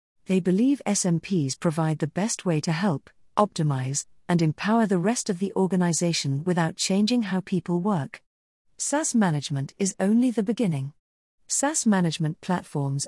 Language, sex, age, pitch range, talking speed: English, female, 40-59, 155-215 Hz, 140 wpm